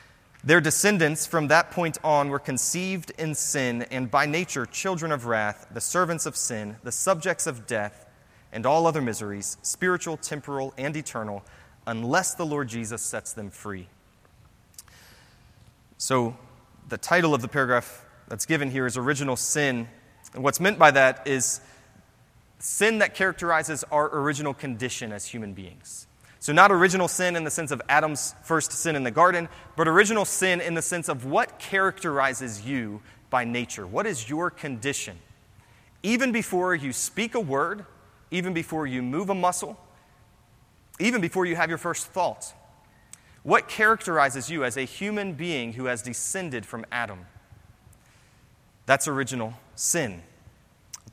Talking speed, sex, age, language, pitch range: 155 wpm, male, 30-49, English, 115-165 Hz